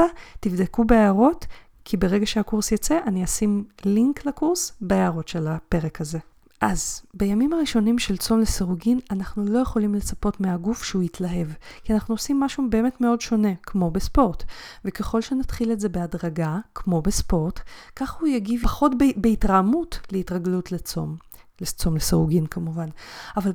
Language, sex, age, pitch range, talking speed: Hebrew, female, 30-49, 180-225 Hz, 140 wpm